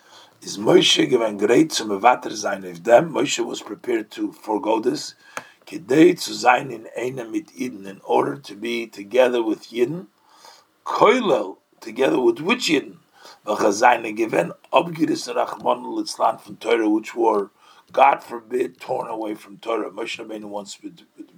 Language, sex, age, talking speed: English, male, 50-69, 150 wpm